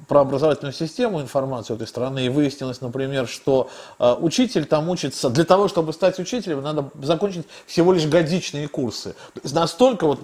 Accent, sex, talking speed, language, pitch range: native, male, 165 wpm, Russian, 140-200 Hz